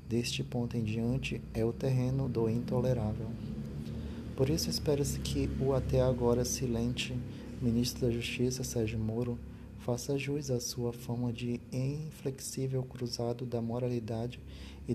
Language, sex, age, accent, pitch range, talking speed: Portuguese, male, 20-39, Brazilian, 115-130 Hz, 135 wpm